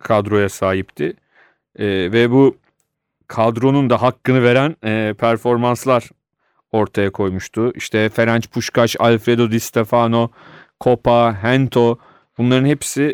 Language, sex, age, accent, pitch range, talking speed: Turkish, male, 40-59, native, 115-140 Hz, 105 wpm